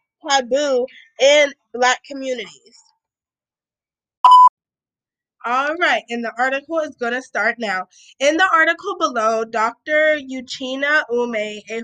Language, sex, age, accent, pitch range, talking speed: English, female, 20-39, American, 220-275 Hz, 110 wpm